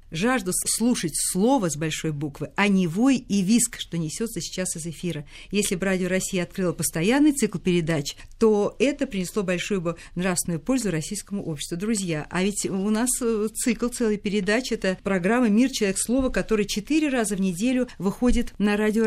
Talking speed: 170 wpm